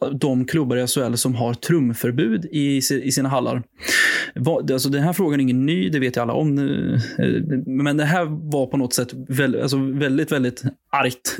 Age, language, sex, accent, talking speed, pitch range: 20-39, Swedish, male, native, 170 wpm, 130-150 Hz